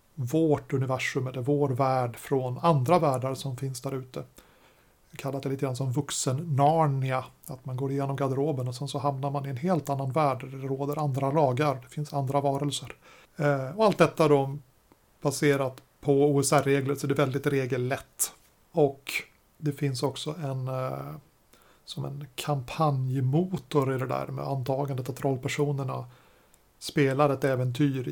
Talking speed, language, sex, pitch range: 160 wpm, Swedish, male, 135-150 Hz